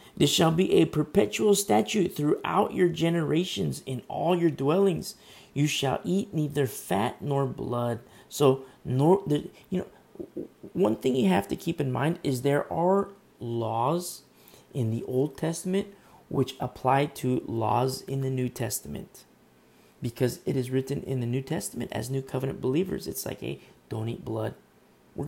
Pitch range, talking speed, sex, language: 120-150 Hz, 160 wpm, male, English